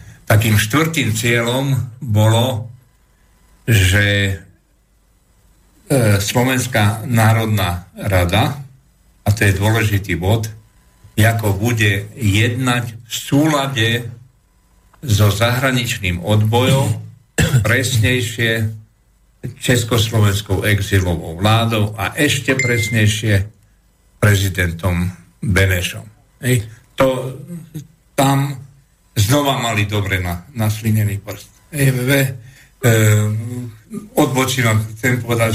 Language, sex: Slovak, male